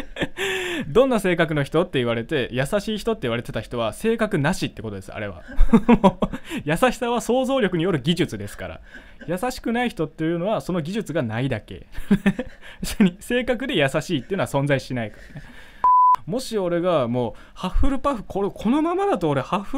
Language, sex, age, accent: Japanese, male, 20-39, native